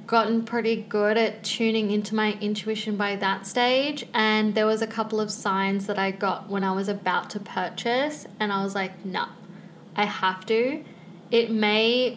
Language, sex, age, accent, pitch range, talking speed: English, female, 20-39, Australian, 200-235 Hz, 180 wpm